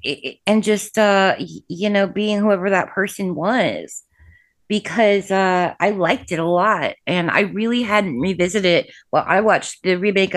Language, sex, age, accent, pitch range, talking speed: English, female, 20-39, American, 175-210 Hz, 170 wpm